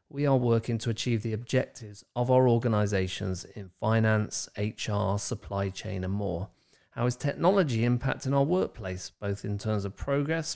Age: 30-49